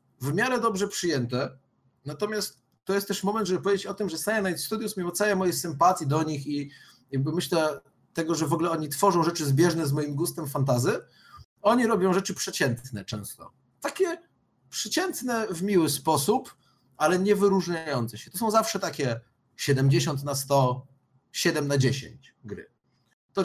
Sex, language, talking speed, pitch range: male, Polish, 160 wpm, 140-195 Hz